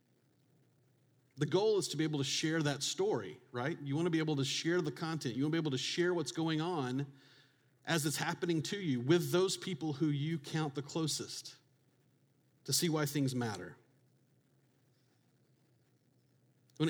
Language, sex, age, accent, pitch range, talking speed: English, male, 40-59, American, 130-145 Hz, 175 wpm